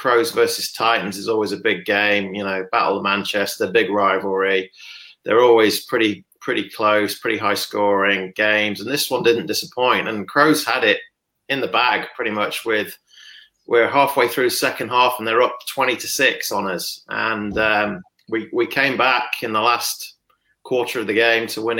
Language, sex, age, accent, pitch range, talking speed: English, male, 30-49, British, 105-150 Hz, 185 wpm